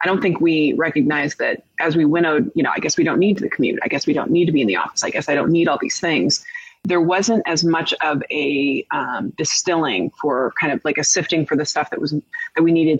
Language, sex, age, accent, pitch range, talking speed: English, female, 30-49, American, 150-195 Hz, 270 wpm